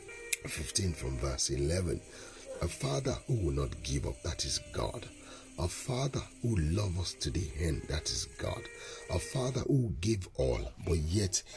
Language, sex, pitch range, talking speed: English, male, 80-120 Hz, 165 wpm